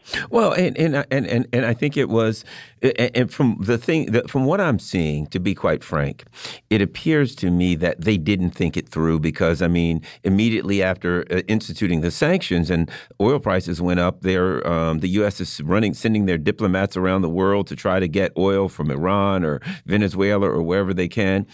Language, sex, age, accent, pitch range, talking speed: English, male, 50-69, American, 95-145 Hz, 200 wpm